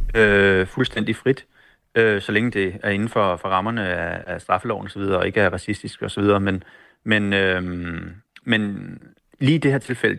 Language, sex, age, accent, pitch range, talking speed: Danish, male, 30-49, native, 100-115 Hz, 185 wpm